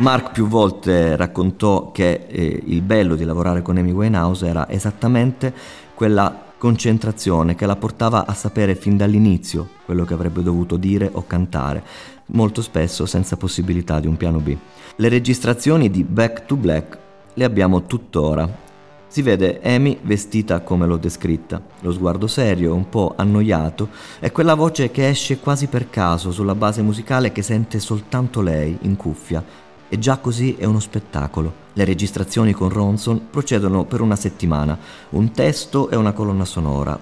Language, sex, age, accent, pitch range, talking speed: Italian, male, 30-49, native, 85-110 Hz, 160 wpm